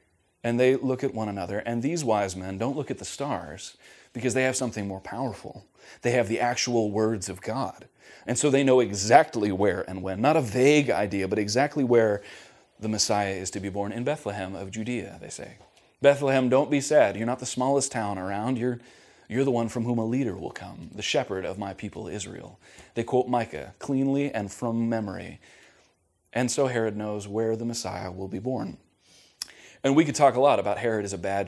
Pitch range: 100-130 Hz